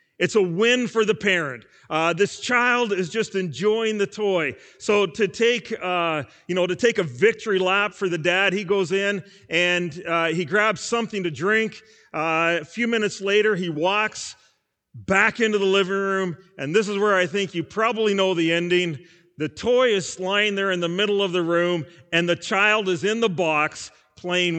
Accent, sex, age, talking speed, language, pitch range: American, male, 40-59, 195 wpm, English, 170-210 Hz